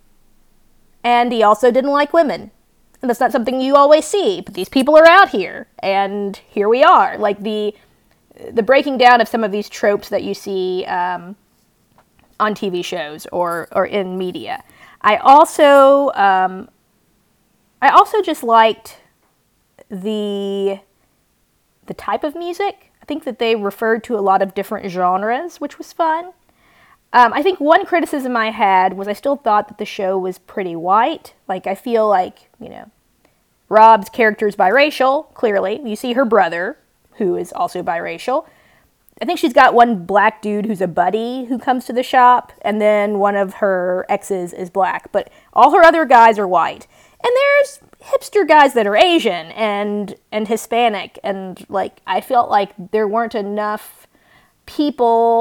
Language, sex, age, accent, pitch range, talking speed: English, female, 20-39, American, 200-270 Hz, 165 wpm